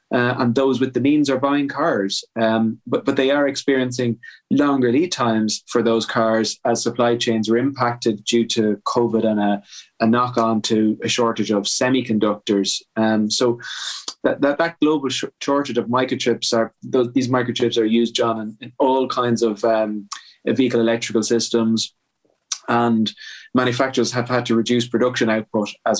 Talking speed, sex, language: 170 wpm, male, English